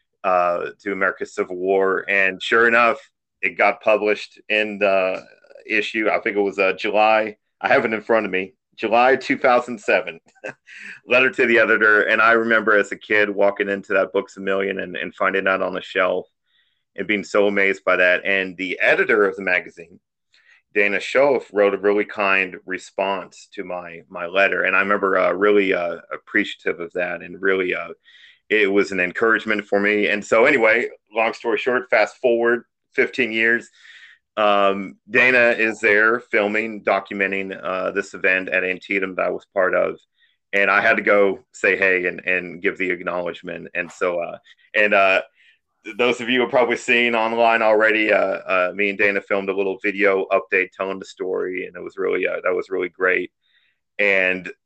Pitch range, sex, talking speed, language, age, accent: 95-115 Hz, male, 185 wpm, English, 40-59, American